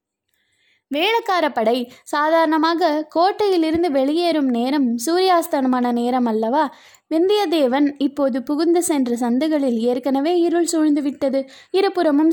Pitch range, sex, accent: 255-325 Hz, female, native